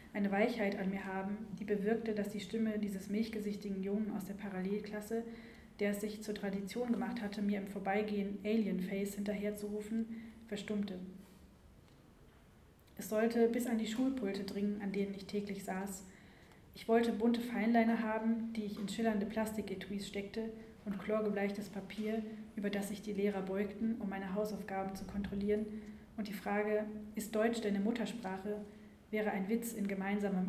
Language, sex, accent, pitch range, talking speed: German, female, German, 200-220 Hz, 155 wpm